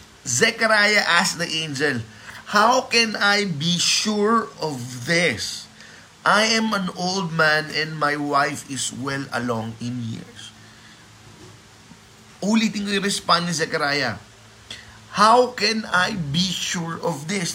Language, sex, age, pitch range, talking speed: Filipino, male, 20-39, 125-180 Hz, 125 wpm